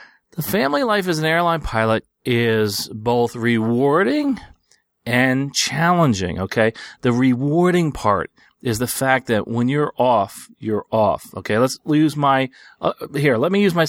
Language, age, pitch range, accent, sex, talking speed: English, 40-59, 110-145 Hz, American, male, 145 wpm